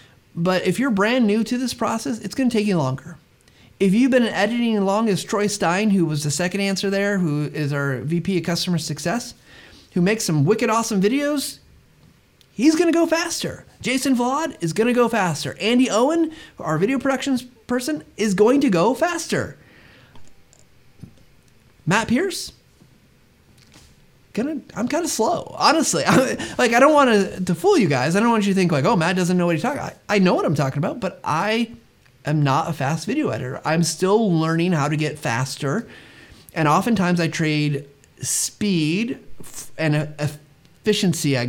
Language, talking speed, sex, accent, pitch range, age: English, 180 wpm, male, American, 155-230 Hz, 30-49